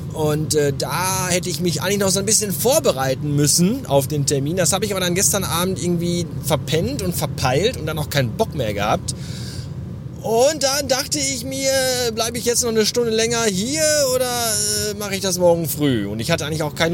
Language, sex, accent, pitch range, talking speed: German, male, German, 150-225 Hz, 215 wpm